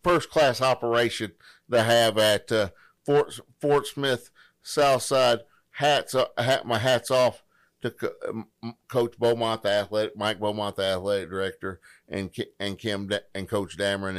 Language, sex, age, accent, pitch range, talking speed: English, male, 50-69, American, 105-130 Hz, 150 wpm